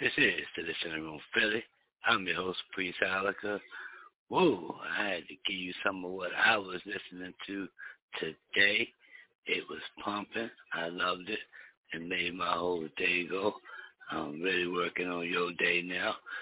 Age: 60-79